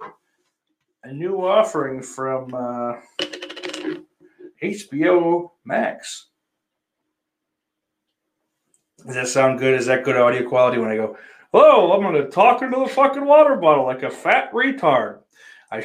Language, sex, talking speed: English, male, 130 wpm